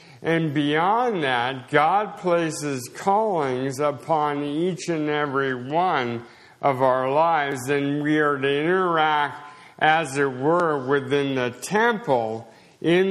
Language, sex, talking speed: English, male, 120 wpm